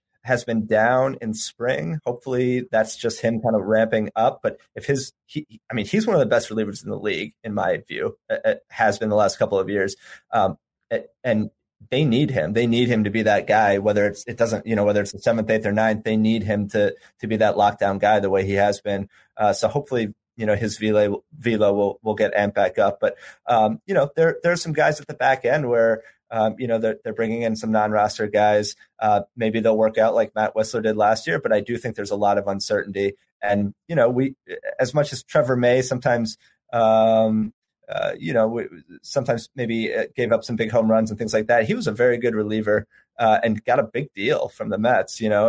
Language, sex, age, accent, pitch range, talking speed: English, male, 30-49, American, 105-125 Hz, 240 wpm